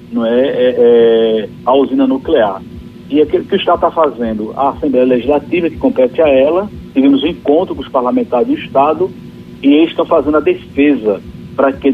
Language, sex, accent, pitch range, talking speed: Portuguese, male, Brazilian, 130-205 Hz, 165 wpm